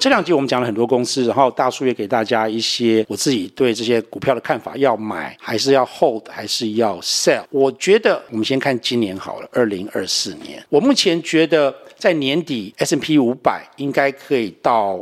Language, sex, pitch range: Chinese, male, 120-170 Hz